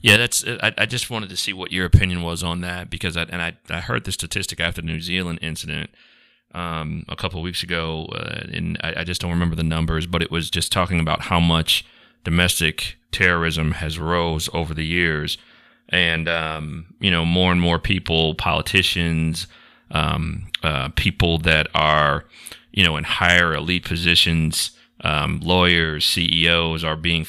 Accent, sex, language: American, male, English